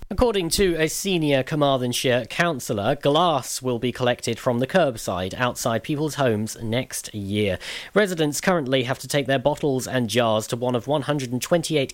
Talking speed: 155 wpm